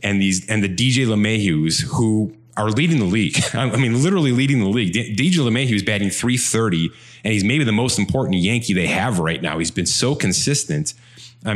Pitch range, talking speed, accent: 95-130 Hz, 190 wpm, American